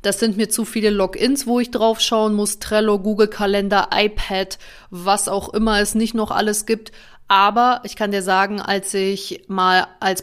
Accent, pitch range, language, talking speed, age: German, 190-220 Hz, German, 190 wpm, 20-39